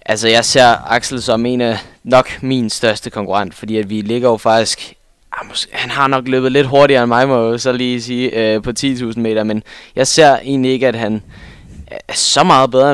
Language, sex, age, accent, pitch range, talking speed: Danish, male, 20-39, native, 110-130 Hz, 215 wpm